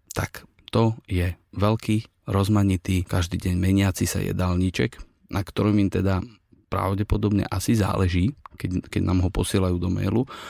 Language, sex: Slovak, male